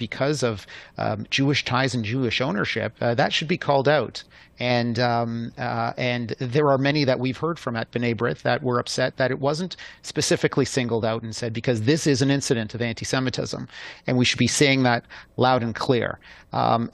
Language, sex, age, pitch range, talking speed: English, male, 40-59, 120-140 Hz, 200 wpm